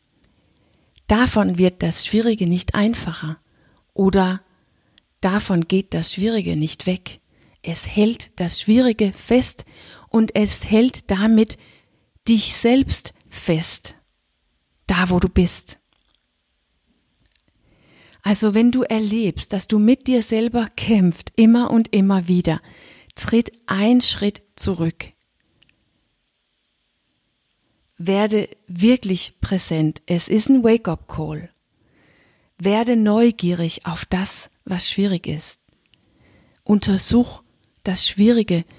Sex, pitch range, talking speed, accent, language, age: female, 170-220 Hz, 100 wpm, German, German, 40-59